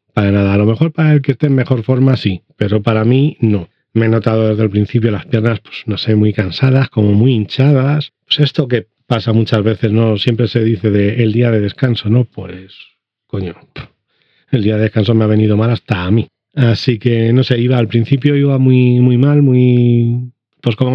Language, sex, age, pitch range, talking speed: Spanish, male, 40-59, 110-130 Hz, 220 wpm